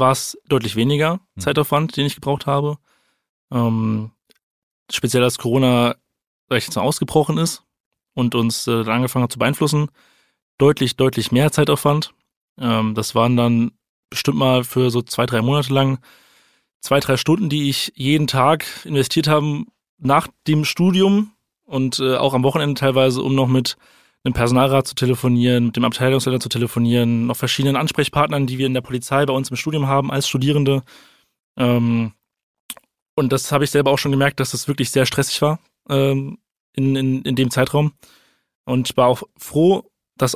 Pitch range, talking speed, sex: 125-145 Hz, 165 wpm, male